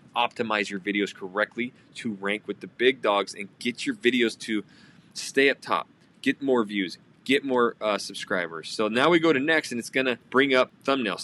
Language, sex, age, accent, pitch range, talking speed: English, male, 20-39, American, 110-135 Hz, 200 wpm